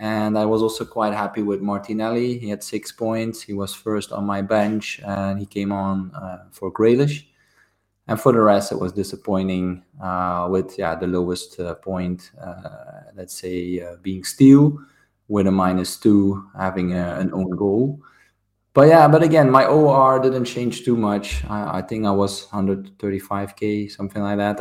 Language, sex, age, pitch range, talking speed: English, male, 20-39, 100-125 Hz, 180 wpm